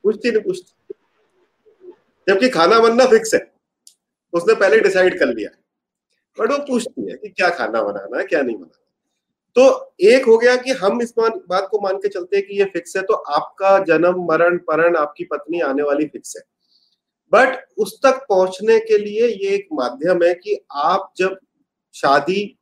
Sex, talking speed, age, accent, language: male, 165 wpm, 30-49, native, Hindi